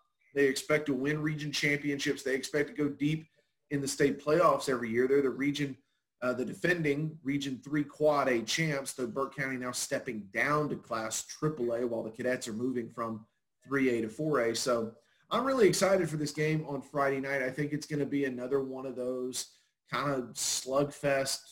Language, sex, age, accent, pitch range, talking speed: English, male, 30-49, American, 120-145 Hz, 200 wpm